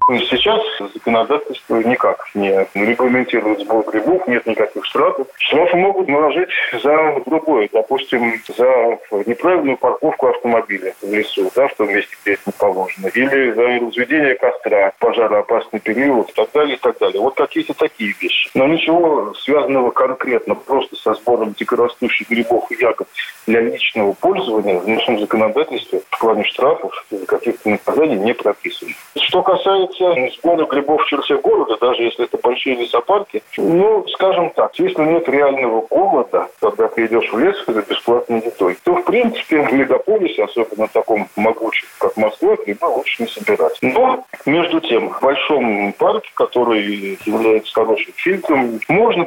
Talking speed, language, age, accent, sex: 150 wpm, Russian, 20-39, native, male